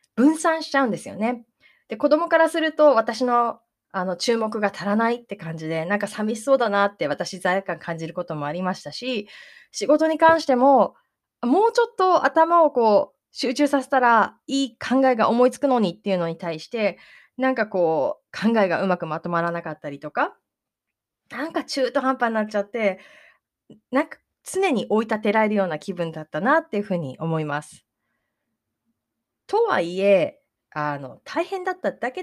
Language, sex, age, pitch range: Japanese, female, 20-39, 180-275 Hz